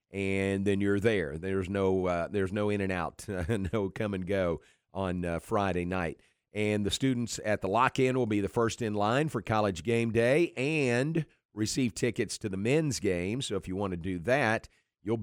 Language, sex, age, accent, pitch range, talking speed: English, male, 50-69, American, 95-125 Hz, 205 wpm